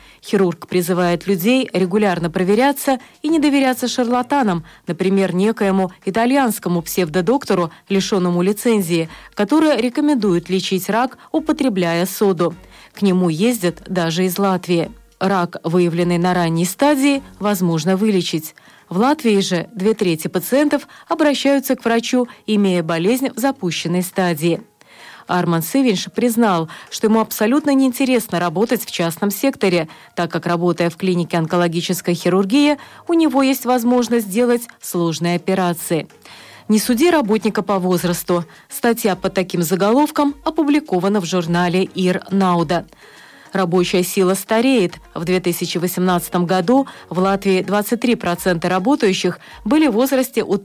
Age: 30-49